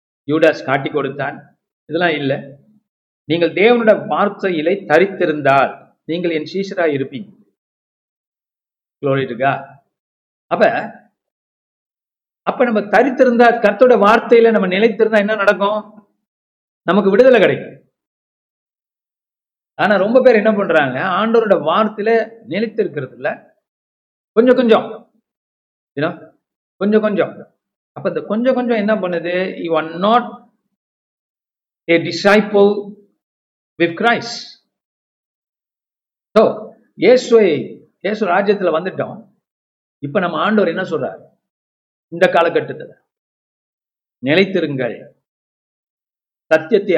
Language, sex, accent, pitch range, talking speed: Tamil, male, native, 165-220 Hz, 80 wpm